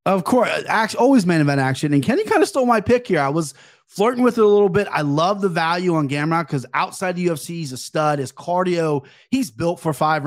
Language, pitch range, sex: English, 145-190 Hz, male